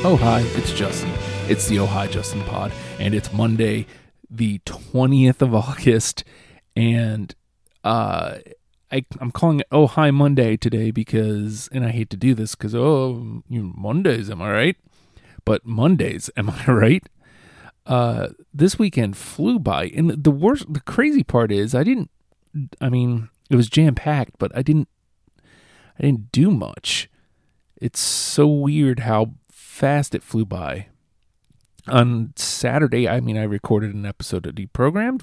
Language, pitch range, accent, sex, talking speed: English, 105-135 Hz, American, male, 155 wpm